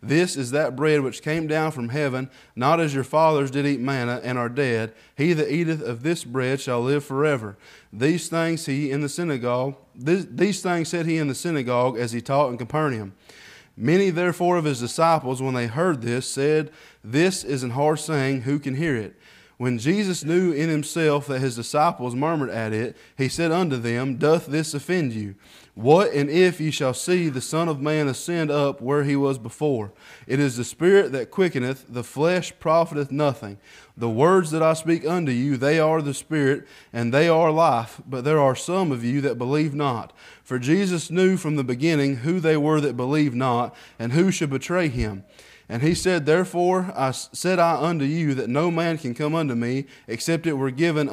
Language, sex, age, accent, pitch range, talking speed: English, male, 30-49, American, 130-165 Hz, 200 wpm